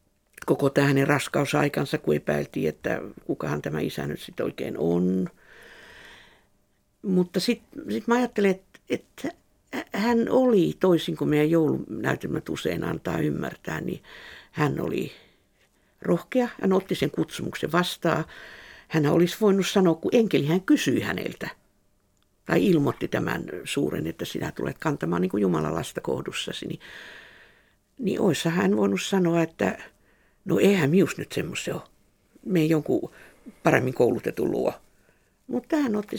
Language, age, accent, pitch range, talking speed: Finnish, 60-79, native, 155-230 Hz, 135 wpm